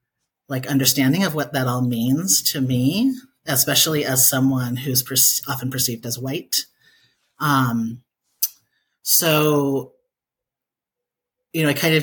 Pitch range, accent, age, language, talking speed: 125-145 Hz, American, 40-59, English, 125 wpm